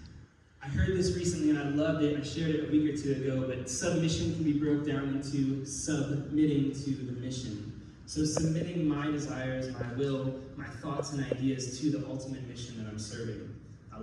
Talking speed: 195 wpm